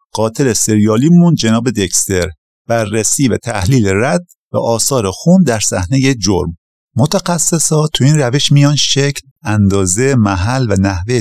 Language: Persian